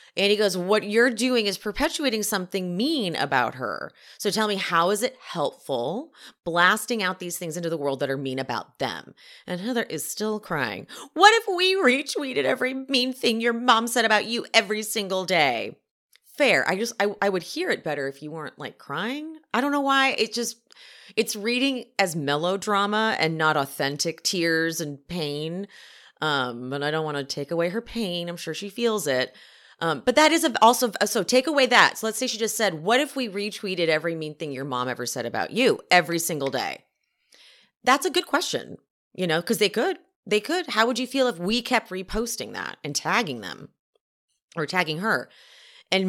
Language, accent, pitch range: English, American, 170-245 Hz